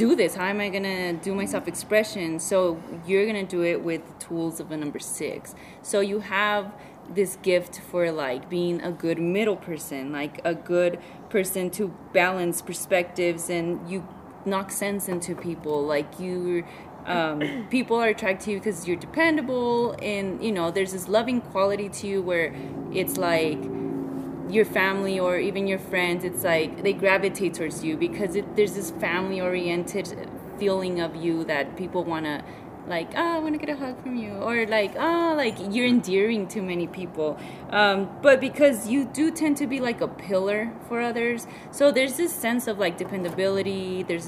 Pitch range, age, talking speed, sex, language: 170-210 Hz, 20-39, 180 wpm, female, English